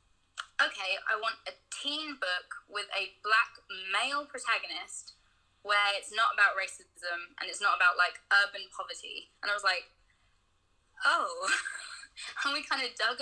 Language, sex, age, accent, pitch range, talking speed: English, female, 20-39, British, 190-220 Hz, 150 wpm